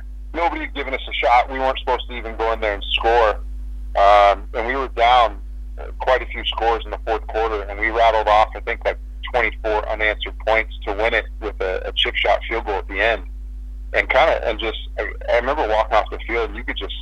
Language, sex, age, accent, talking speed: English, male, 40-59, American, 240 wpm